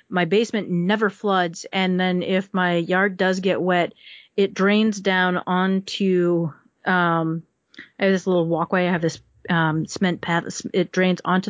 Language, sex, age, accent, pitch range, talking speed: English, female, 30-49, American, 175-205 Hz, 160 wpm